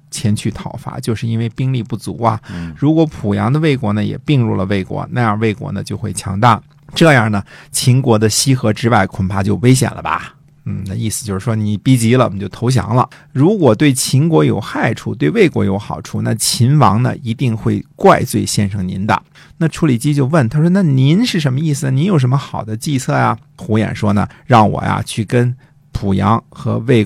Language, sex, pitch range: Chinese, male, 100-135 Hz